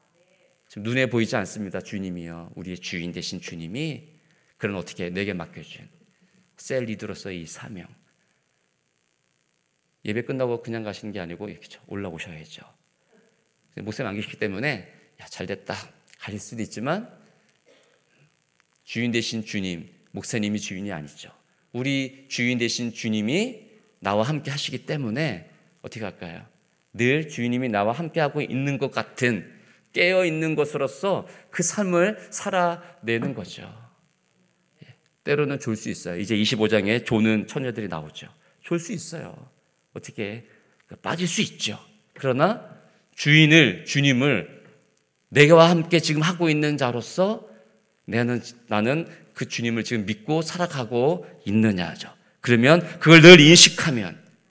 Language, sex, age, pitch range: Korean, male, 40-59, 105-160 Hz